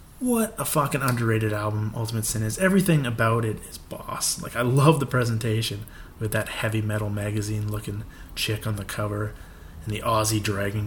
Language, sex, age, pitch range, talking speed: English, male, 20-39, 105-130 Hz, 175 wpm